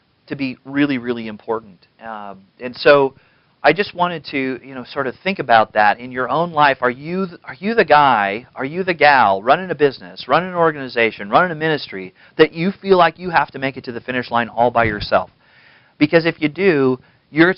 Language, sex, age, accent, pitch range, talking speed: English, male, 40-59, American, 120-155 Hz, 215 wpm